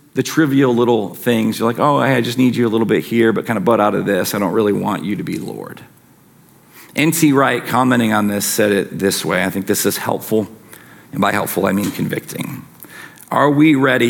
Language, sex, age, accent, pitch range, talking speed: English, male, 40-59, American, 115-140 Hz, 225 wpm